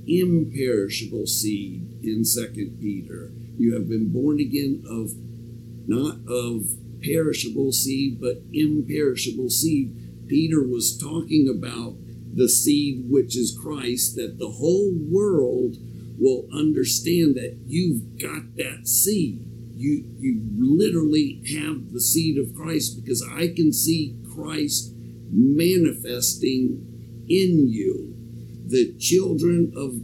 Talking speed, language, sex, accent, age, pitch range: 115 wpm, English, male, American, 50-69, 115-155 Hz